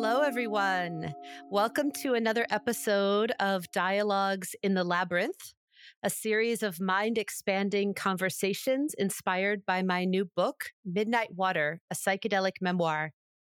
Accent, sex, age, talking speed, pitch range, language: American, female, 40-59, 115 wpm, 185-225 Hz, English